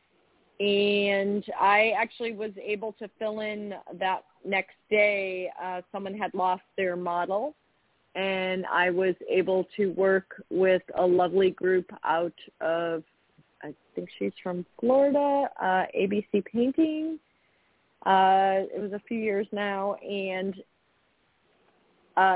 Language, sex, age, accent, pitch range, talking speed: English, female, 30-49, American, 180-210 Hz, 125 wpm